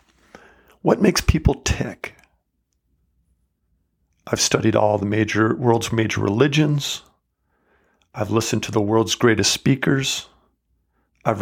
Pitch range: 85-125 Hz